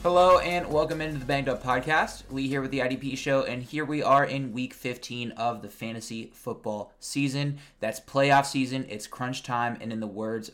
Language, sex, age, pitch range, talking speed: English, male, 20-39, 110-135 Hz, 205 wpm